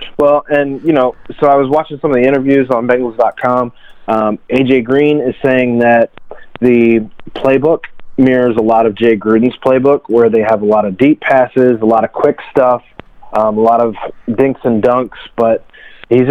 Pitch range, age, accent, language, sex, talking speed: 110-130 Hz, 30-49, American, English, male, 185 wpm